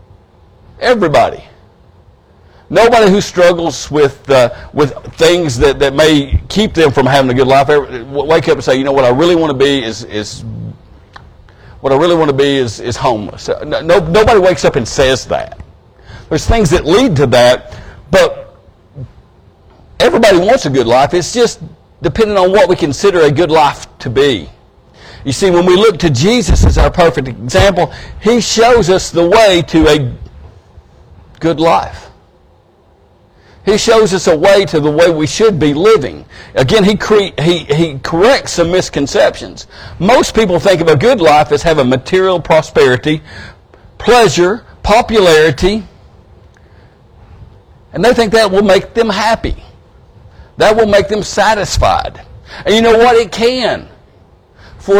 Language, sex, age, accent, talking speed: English, male, 50-69, American, 160 wpm